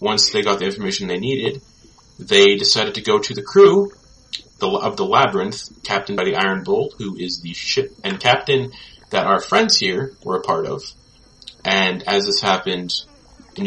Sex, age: male, 30-49